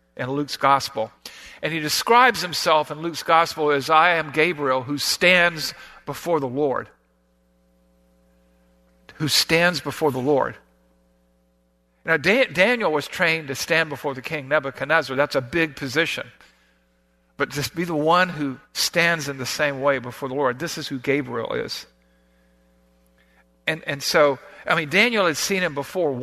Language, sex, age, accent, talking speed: English, male, 50-69, American, 155 wpm